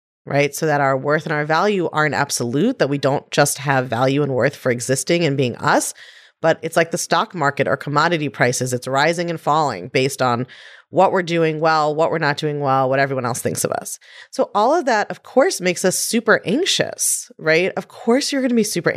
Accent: American